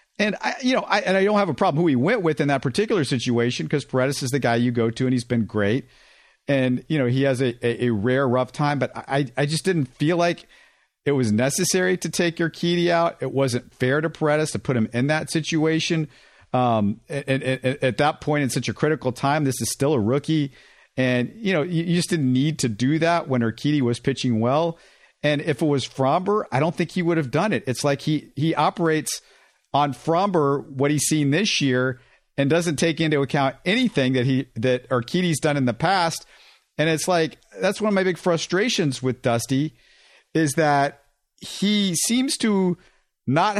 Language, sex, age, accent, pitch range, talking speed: English, male, 50-69, American, 130-165 Hz, 215 wpm